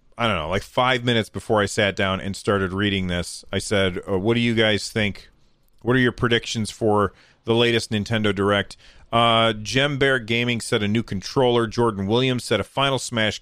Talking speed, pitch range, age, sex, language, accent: 200 wpm, 100-125 Hz, 40-59, male, English, American